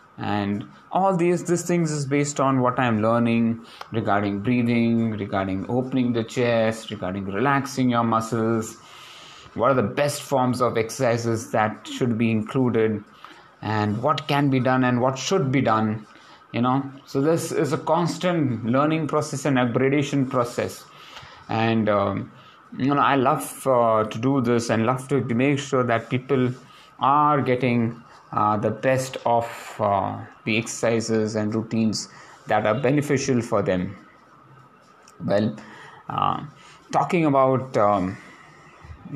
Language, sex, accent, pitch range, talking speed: English, male, Indian, 110-135 Hz, 140 wpm